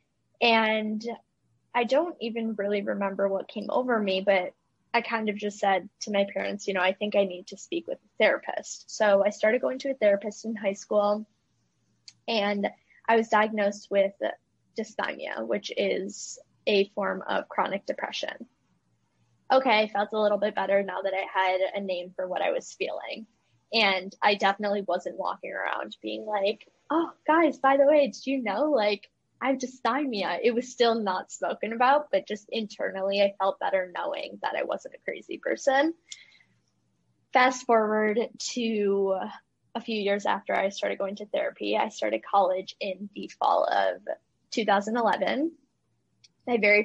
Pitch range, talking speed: 195-240 Hz, 165 wpm